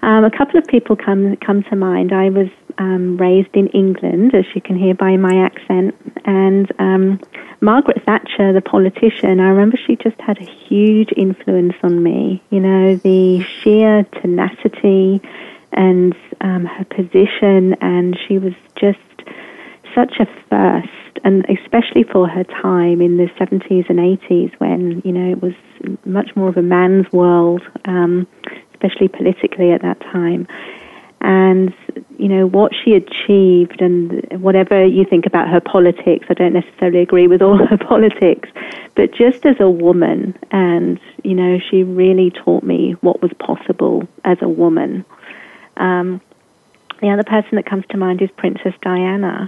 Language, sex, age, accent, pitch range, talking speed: English, female, 30-49, British, 180-200 Hz, 160 wpm